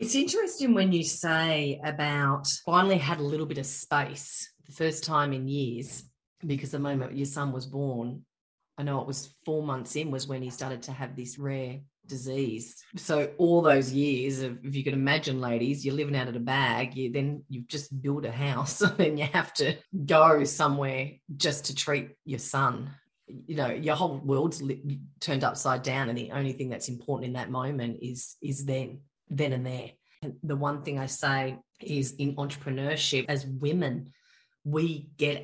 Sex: female